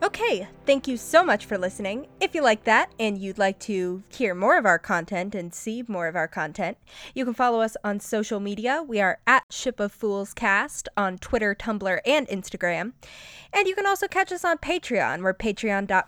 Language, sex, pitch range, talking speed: English, female, 200-270 Hz, 200 wpm